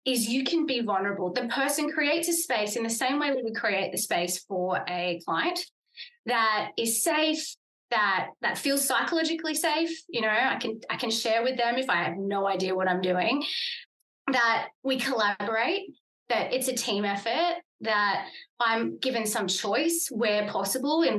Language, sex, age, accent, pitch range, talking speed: English, female, 20-39, Australian, 210-310 Hz, 180 wpm